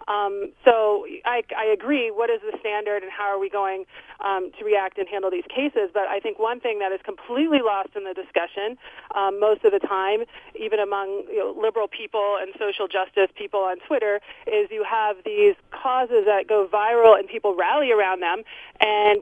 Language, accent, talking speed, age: English, American, 200 wpm, 30-49